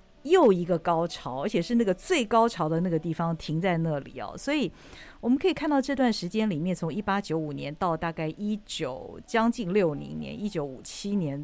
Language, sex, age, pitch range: Chinese, female, 50-69, 155-215 Hz